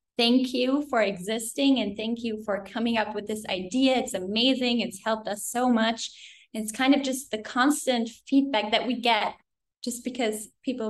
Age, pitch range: 10-29, 215-250 Hz